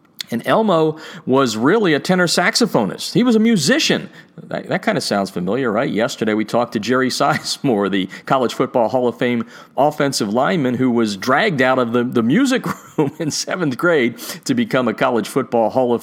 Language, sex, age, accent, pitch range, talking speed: English, male, 40-59, American, 120-170 Hz, 190 wpm